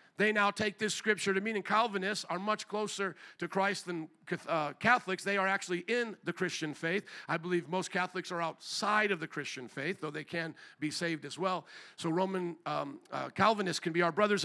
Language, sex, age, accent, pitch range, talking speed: English, male, 50-69, American, 185-240 Hz, 205 wpm